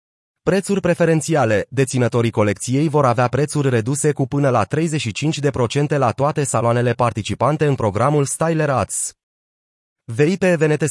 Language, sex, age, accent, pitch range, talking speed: Romanian, male, 30-49, native, 115-150 Hz, 120 wpm